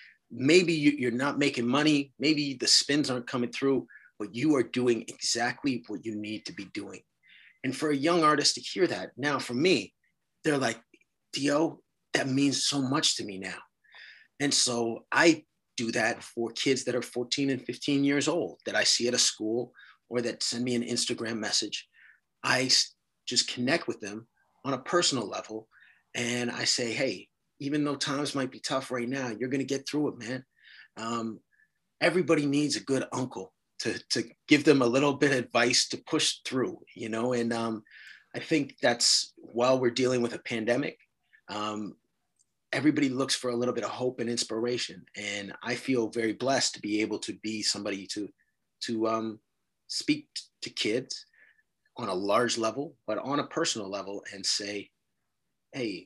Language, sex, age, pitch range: English, male, 30-49, 115-145 Hz